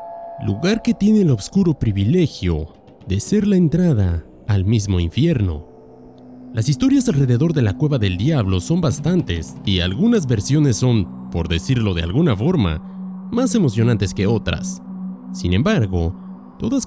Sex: male